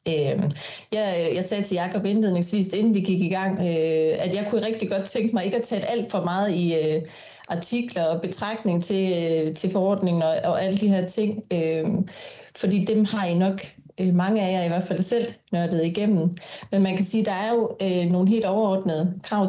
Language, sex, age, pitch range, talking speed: Danish, female, 30-49, 175-205 Hz, 190 wpm